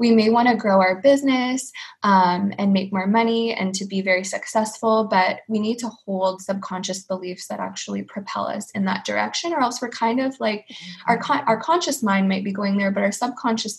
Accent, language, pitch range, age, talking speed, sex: American, English, 195-230 Hz, 20-39, 215 wpm, female